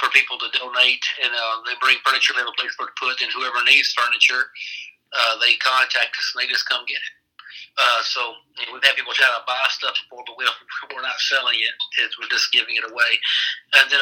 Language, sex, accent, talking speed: English, male, American, 235 wpm